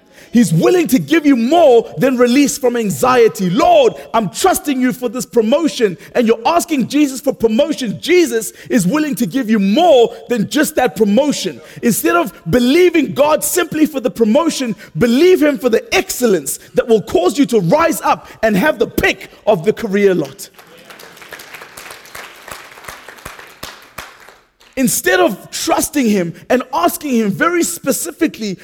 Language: English